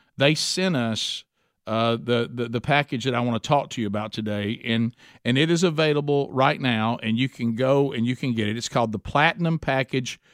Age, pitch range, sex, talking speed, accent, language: 50-69, 125-160 Hz, male, 220 wpm, American, English